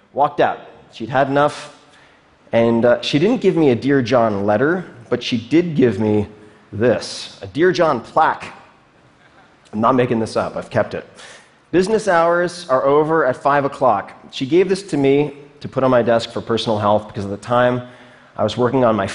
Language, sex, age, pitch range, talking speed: Russian, male, 30-49, 105-135 Hz, 195 wpm